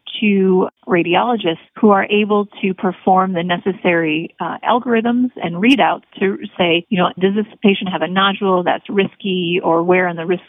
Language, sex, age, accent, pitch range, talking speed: English, female, 40-59, American, 180-225 Hz, 170 wpm